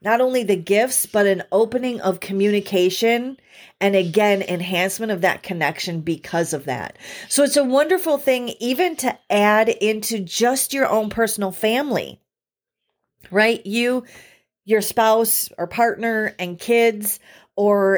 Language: English